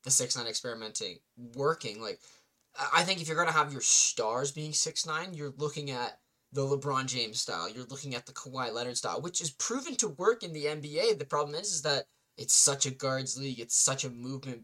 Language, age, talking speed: English, 10-29, 215 wpm